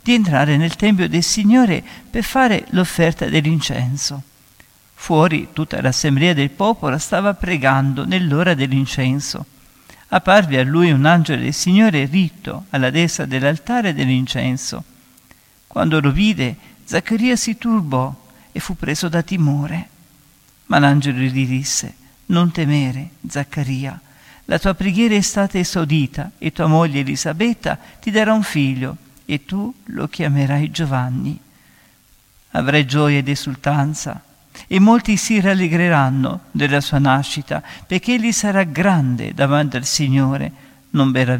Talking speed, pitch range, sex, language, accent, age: 130 wpm, 140-185 Hz, male, Italian, native, 50-69